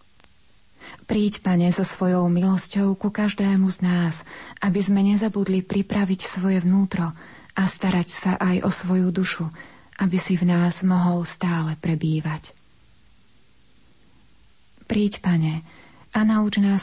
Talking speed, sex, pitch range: 120 wpm, female, 165-200 Hz